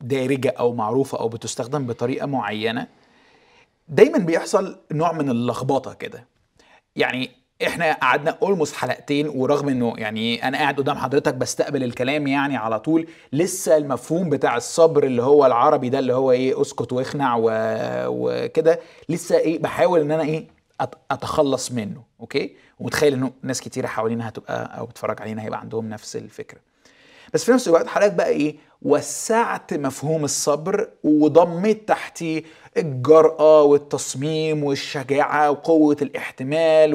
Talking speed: 135 wpm